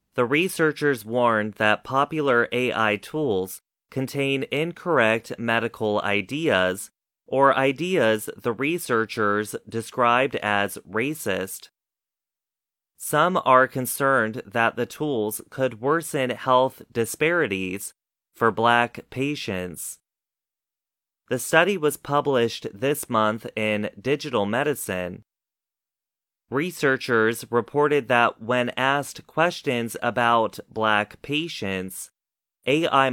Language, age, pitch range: Chinese, 30-49, 110-140 Hz